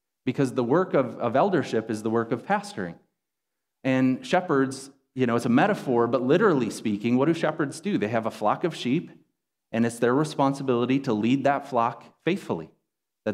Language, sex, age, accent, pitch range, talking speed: English, male, 30-49, American, 115-140 Hz, 185 wpm